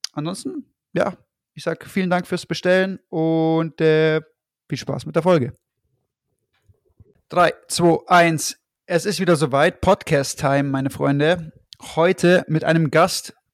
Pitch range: 145-180 Hz